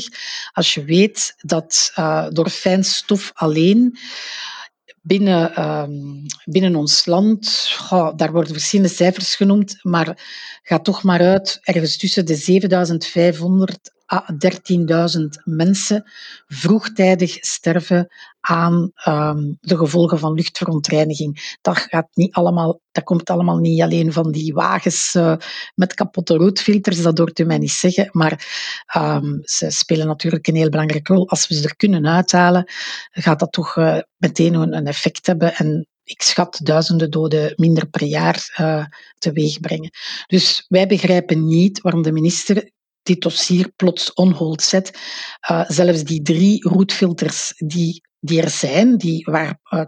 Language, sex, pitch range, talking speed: Dutch, female, 160-190 Hz, 145 wpm